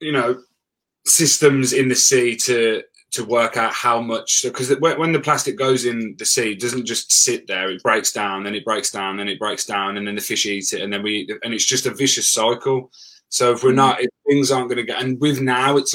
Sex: male